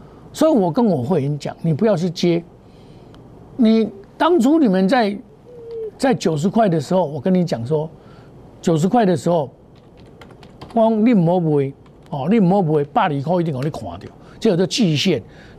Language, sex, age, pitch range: Chinese, male, 60-79, 145-220 Hz